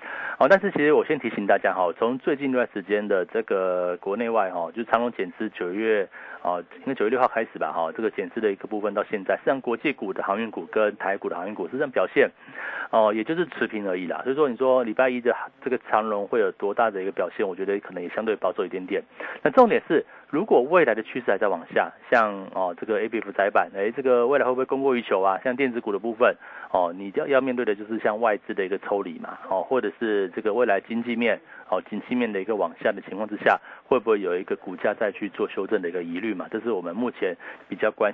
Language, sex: Chinese, male